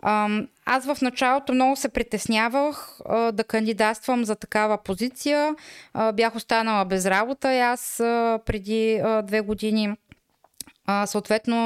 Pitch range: 215-275 Hz